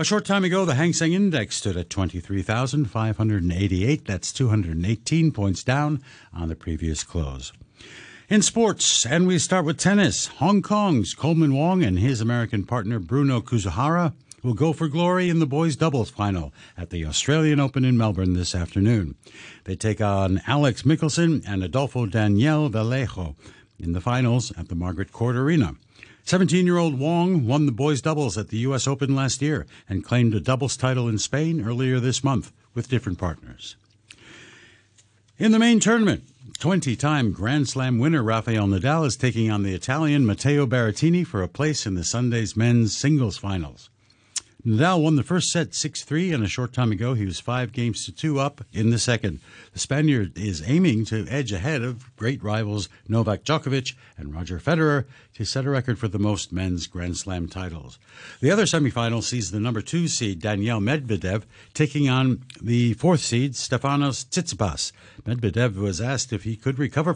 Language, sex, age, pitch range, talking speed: English, male, 60-79, 105-145 Hz, 170 wpm